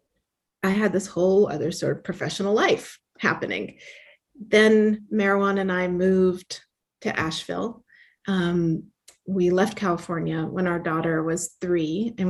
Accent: American